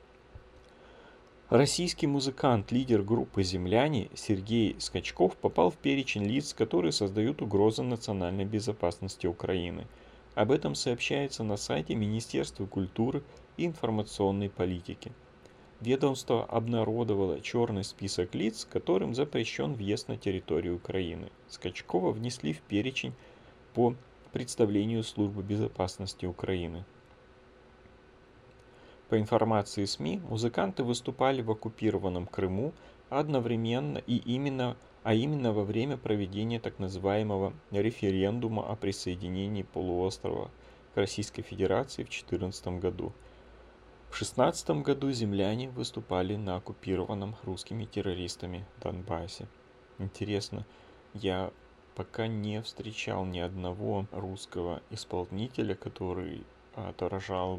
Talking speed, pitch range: 100 wpm, 95-120 Hz